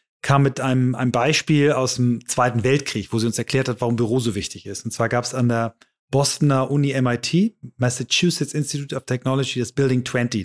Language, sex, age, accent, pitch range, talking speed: German, male, 30-49, German, 125-155 Hz, 200 wpm